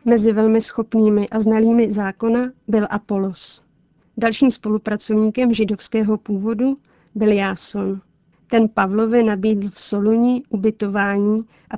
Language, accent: Czech, native